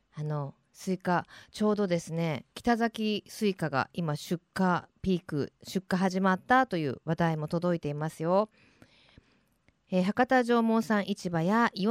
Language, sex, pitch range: Japanese, female, 170-240 Hz